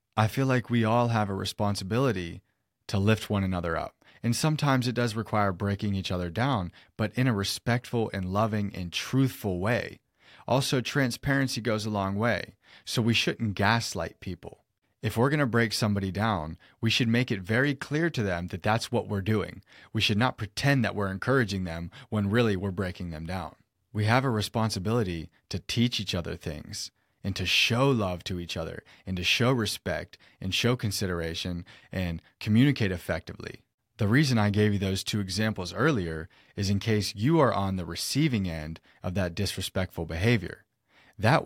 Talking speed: 180 wpm